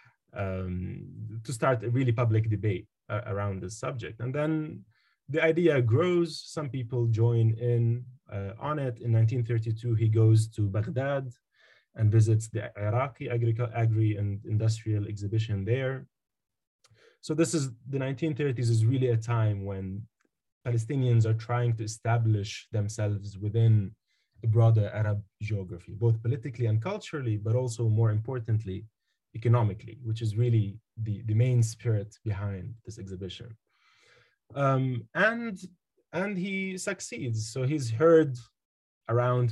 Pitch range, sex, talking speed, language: 110-125 Hz, male, 135 wpm, English